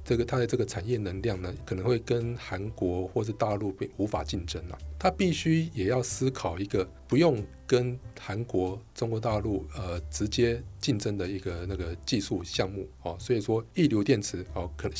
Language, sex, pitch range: Chinese, male, 90-115 Hz